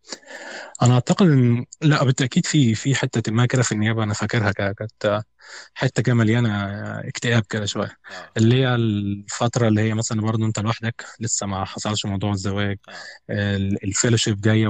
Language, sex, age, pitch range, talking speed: Arabic, male, 20-39, 105-125 Hz, 145 wpm